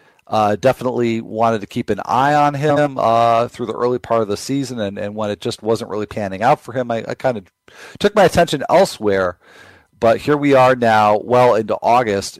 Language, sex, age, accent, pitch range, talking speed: English, male, 40-59, American, 100-125 Hz, 215 wpm